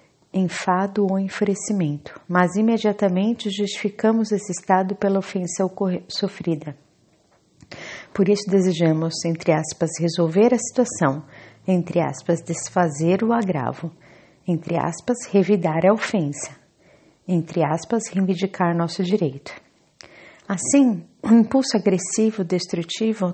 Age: 40-59